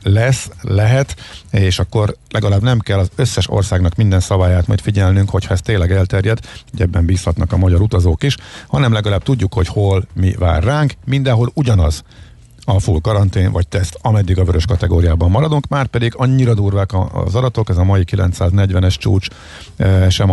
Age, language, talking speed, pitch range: 50-69, Hungarian, 160 wpm, 90-105 Hz